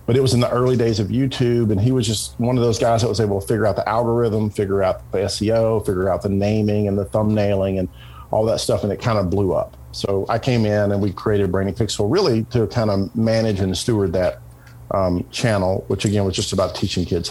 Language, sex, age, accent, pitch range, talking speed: English, male, 50-69, American, 95-115 Hz, 250 wpm